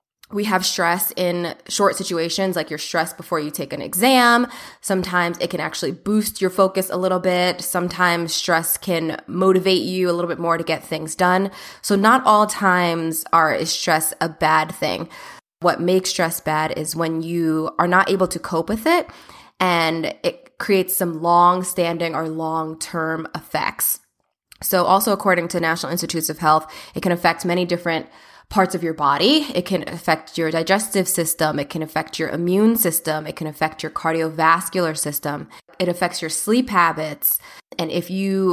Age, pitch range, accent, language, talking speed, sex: 20-39, 160-185 Hz, American, English, 175 wpm, female